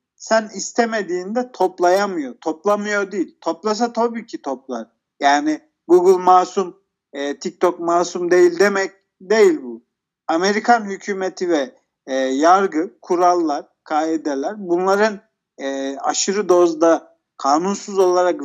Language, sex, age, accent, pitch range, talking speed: Turkish, male, 50-69, native, 165-215 Hz, 105 wpm